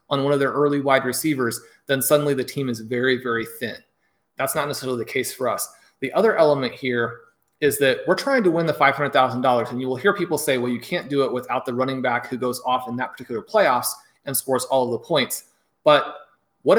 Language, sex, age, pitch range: English, male, 30-49, 125-150 Hz